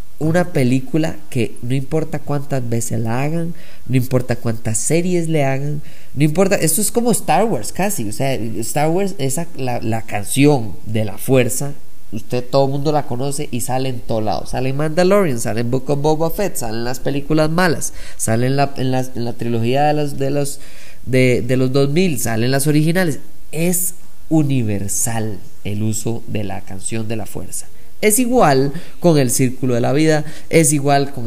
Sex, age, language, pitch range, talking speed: male, 20-39, Spanish, 115-150 Hz, 190 wpm